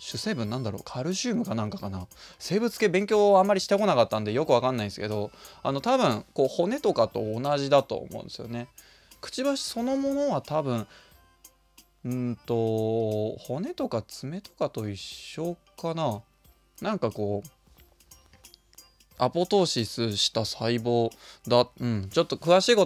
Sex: male